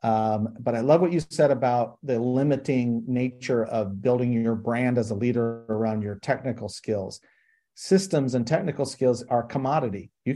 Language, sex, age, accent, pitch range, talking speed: English, male, 40-59, American, 115-140 Hz, 170 wpm